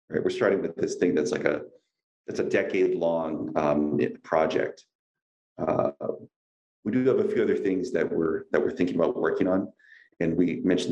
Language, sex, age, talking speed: English, male, 30-49, 180 wpm